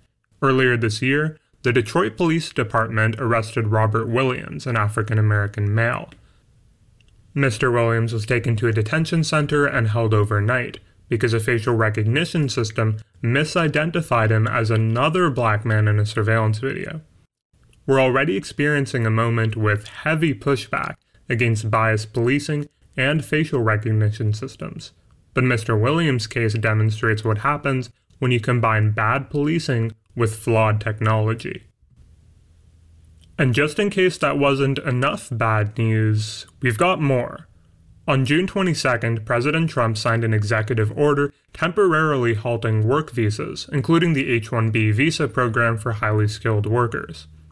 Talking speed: 130 wpm